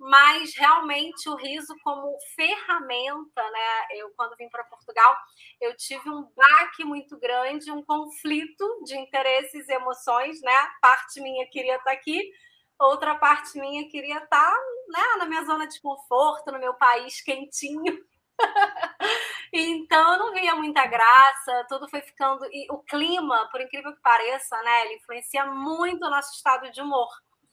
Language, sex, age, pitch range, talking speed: Portuguese, female, 20-39, 255-310 Hz, 155 wpm